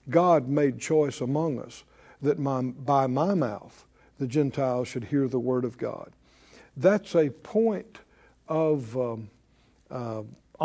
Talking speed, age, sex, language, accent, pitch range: 130 wpm, 60-79, male, English, American, 135-195 Hz